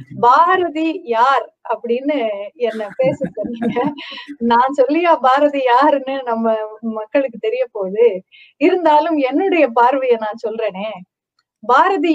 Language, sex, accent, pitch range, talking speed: Tamil, female, native, 235-335 Hz, 100 wpm